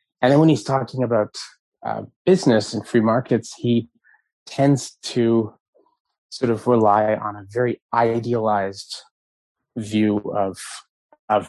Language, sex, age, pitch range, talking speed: English, male, 30-49, 105-125 Hz, 125 wpm